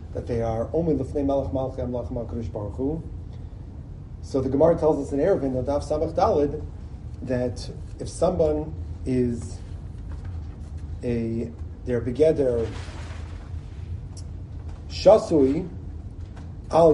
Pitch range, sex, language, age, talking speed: 85-135 Hz, male, English, 40-59, 105 wpm